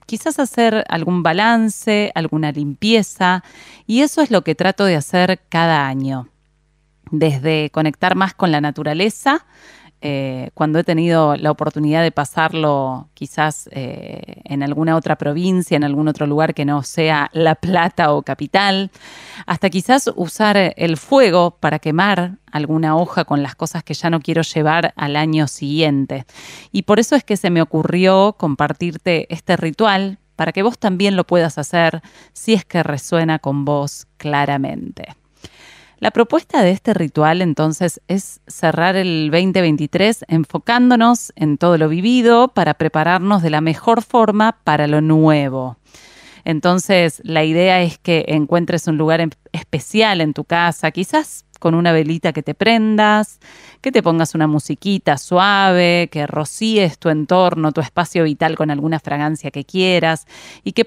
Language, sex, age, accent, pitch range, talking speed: Spanish, female, 30-49, Argentinian, 155-195 Hz, 155 wpm